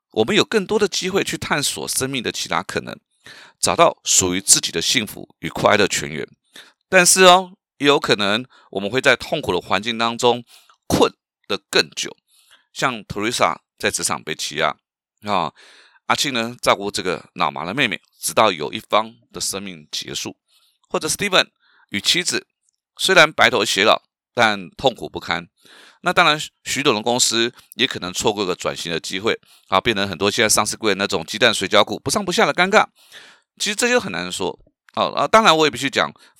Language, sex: Chinese, male